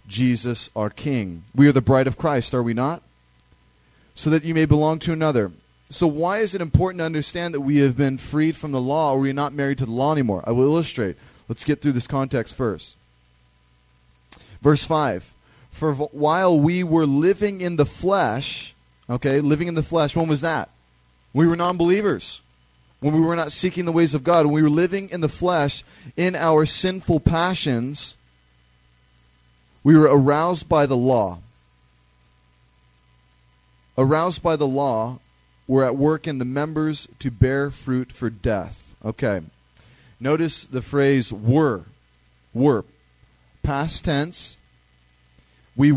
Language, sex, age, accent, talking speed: English, male, 30-49, American, 160 wpm